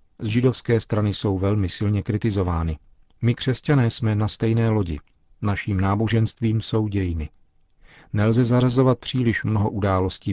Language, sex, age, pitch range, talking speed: Czech, male, 40-59, 95-115 Hz, 130 wpm